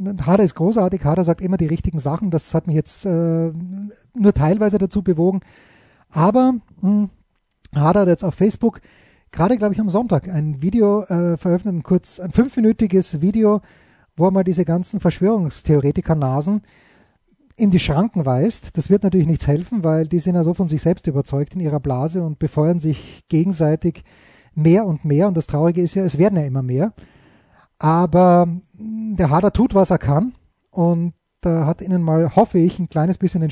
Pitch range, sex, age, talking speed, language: 155-190 Hz, male, 30-49, 175 wpm, German